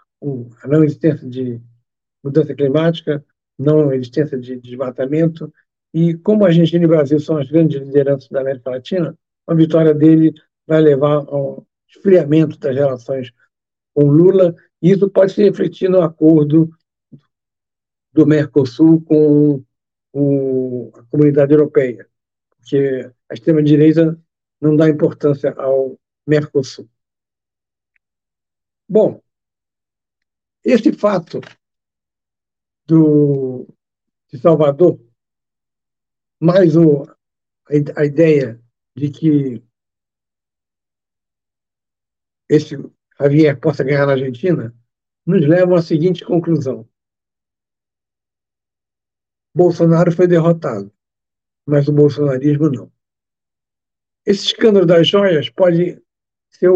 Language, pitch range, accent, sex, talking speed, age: Portuguese, 135-165 Hz, Brazilian, male, 100 wpm, 60-79